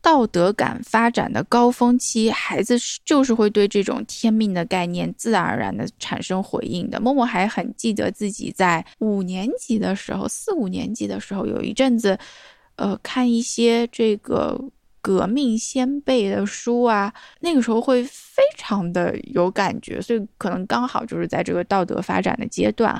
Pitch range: 195-245 Hz